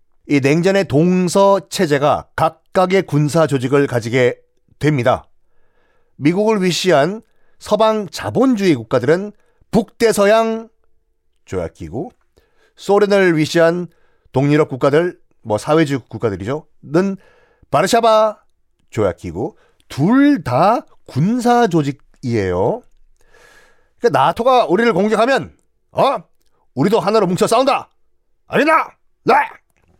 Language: Korean